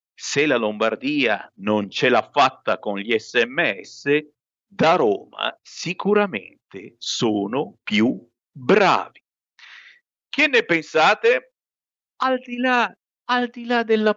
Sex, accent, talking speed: male, native, 110 wpm